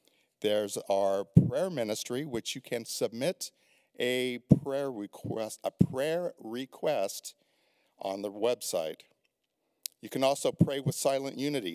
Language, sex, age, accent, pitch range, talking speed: English, male, 50-69, American, 105-130 Hz, 125 wpm